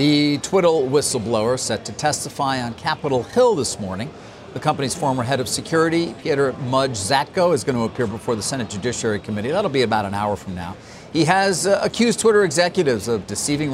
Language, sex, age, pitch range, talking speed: English, male, 50-69, 115-145 Hz, 190 wpm